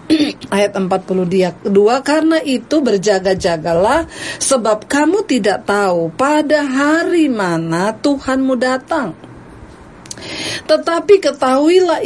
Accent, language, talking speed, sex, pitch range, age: Indonesian, English, 80 wpm, female, 190-270 Hz, 40-59